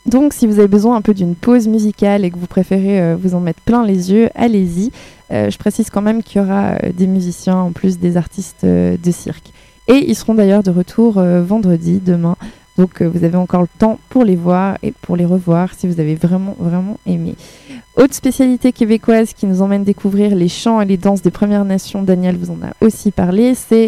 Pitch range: 180-225 Hz